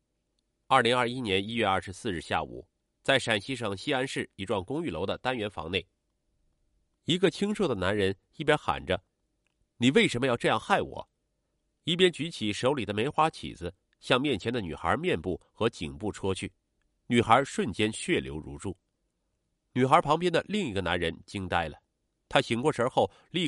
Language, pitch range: Chinese, 95-140 Hz